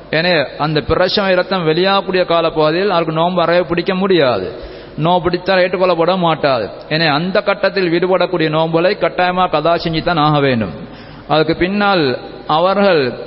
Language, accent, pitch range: Tamil, native, 165-185 Hz